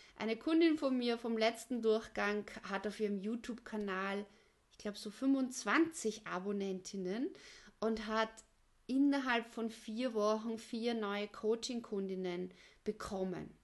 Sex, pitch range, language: female, 210-255 Hz, German